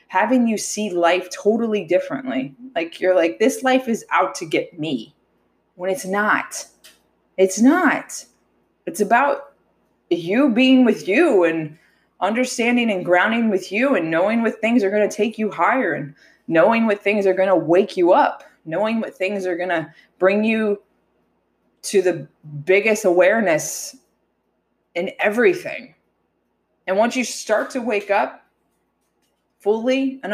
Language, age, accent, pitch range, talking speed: English, 20-39, American, 180-245 Hz, 145 wpm